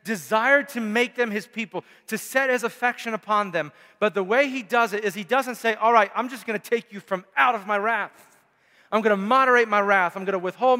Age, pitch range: 40-59, 170-225 Hz